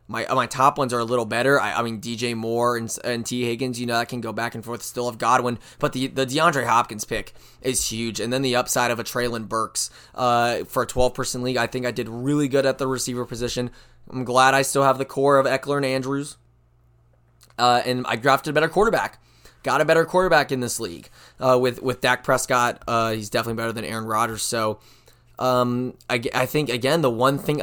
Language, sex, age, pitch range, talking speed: English, male, 20-39, 115-135 Hz, 230 wpm